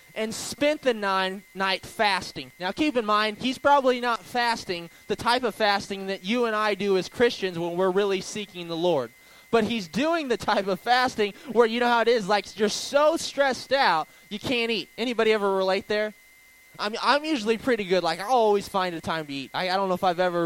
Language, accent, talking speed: English, American, 225 wpm